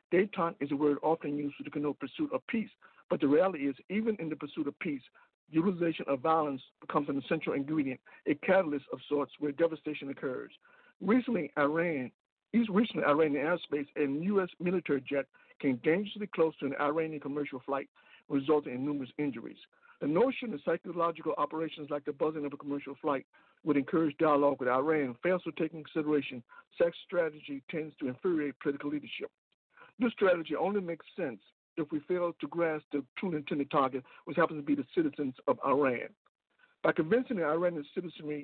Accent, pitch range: American, 145-185 Hz